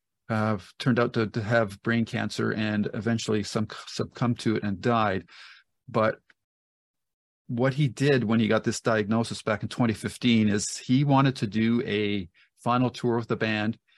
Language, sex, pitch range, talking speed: English, male, 110-120 Hz, 165 wpm